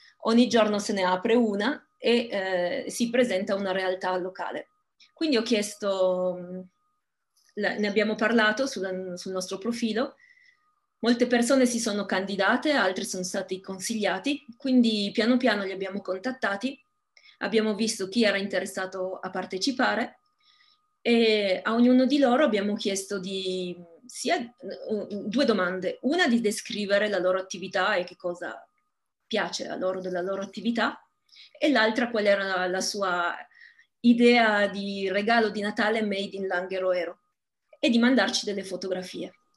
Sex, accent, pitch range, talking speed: female, native, 190-245 Hz, 140 wpm